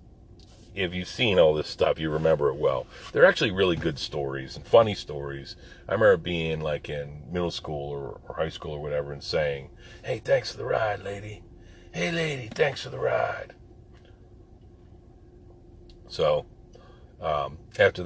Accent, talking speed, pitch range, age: American, 160 wpm, 80-115 Hz, 40-59